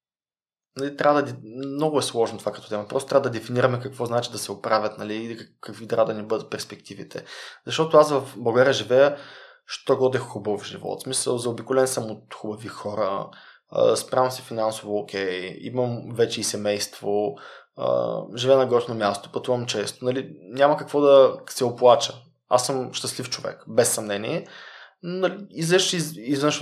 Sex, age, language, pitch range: male, 20-39, Bulgarian, 110-130 Hz